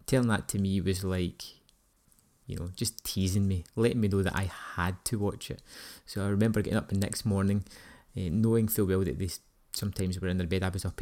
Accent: British